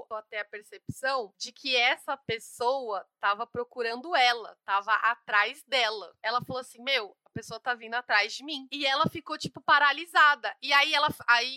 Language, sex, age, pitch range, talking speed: Portuguese, female, 20-39, 220-270 Hz, 170 wpm